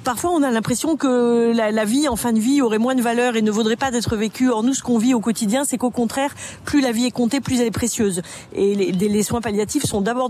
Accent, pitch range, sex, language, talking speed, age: French, 205-240 Hz, female, French, 280 wpm, 40-59